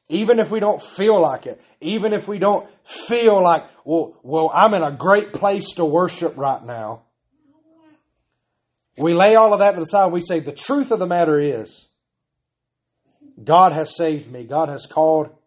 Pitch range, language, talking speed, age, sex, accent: 145-190 Hz, English, 185 wpm, 30-49, male, American